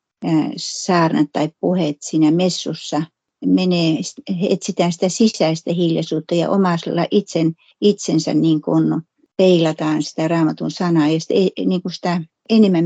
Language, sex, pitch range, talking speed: Finnish, female, 165-190 Hz, 120 wpm